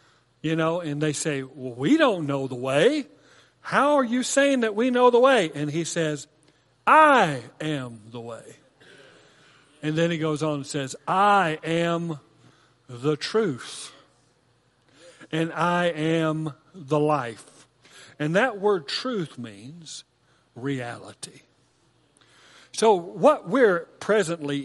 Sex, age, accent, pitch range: male, 50-69, American, 145-200 Hz